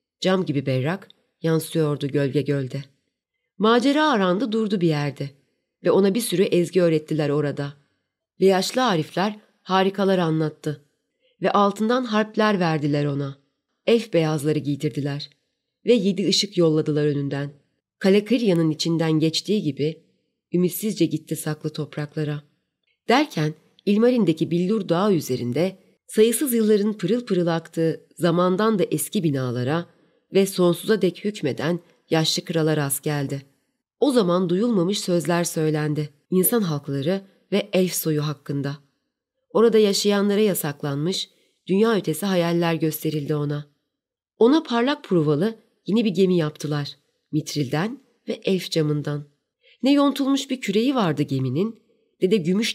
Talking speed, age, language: 120 wpm, 30-49, Turkish